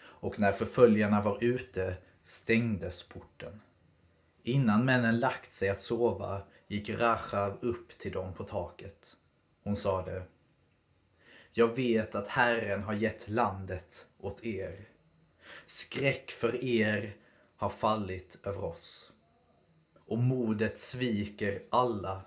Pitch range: 100-120 Hz